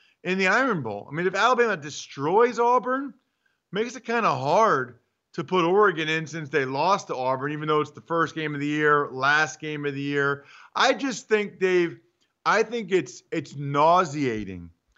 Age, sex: 40-59, male